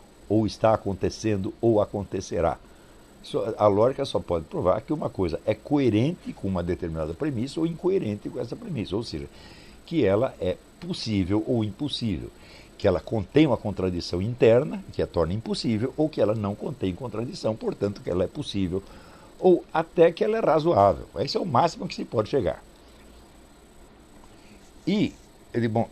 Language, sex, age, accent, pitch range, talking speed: Portuguese, male, 60-79, Brazilian, 100-155 Hz, 160 wpm